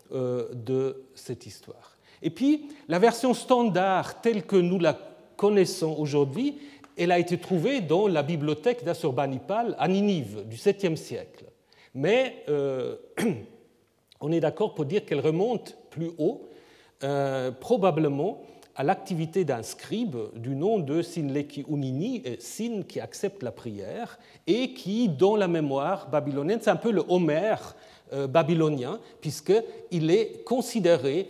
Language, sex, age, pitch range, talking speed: French, male, 40-59, 140-210 Hz, 130 wpm